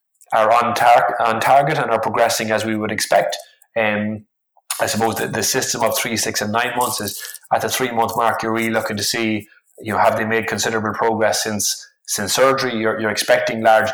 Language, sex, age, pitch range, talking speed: English, male, 20-39, 110-120 Hz, 205 wpm